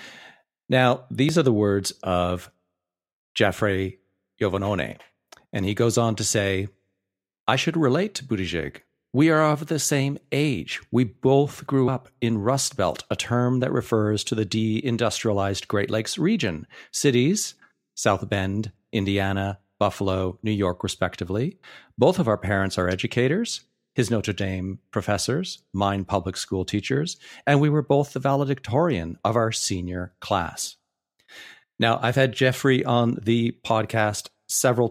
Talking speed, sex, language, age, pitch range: 140 wpm, male, English, 50-69, 95-130 Hz